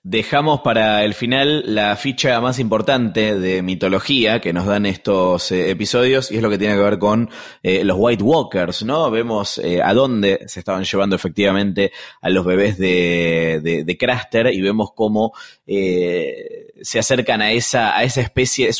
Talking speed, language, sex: 180 wpm, Spanish, male